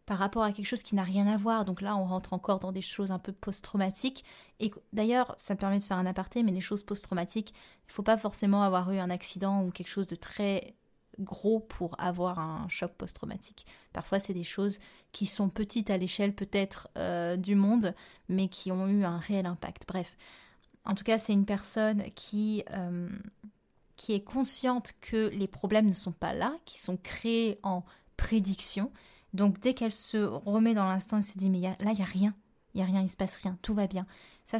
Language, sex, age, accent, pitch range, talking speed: French, female, 20-39, French, 190-225 Hz, 215 wpm